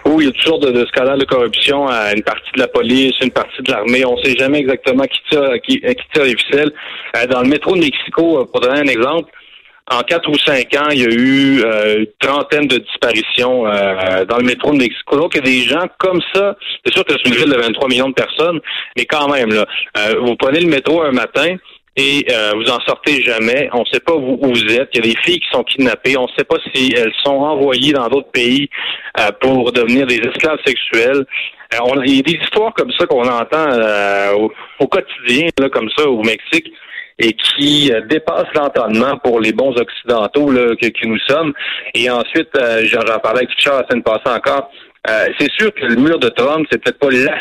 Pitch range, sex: 115-150 Hz, male